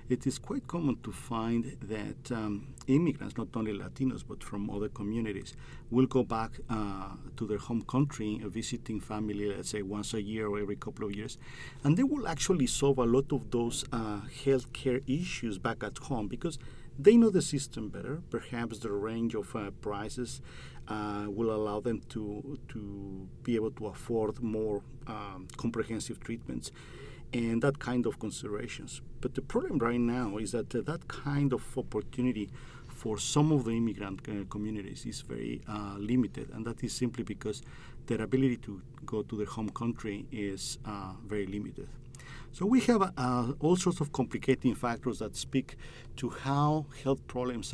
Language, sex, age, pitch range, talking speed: English, male, 40-59, 105-130 Hz, 170 wpm